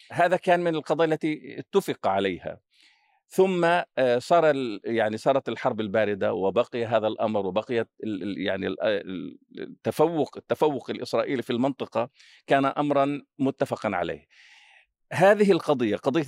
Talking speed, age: 110 wpm, 50-69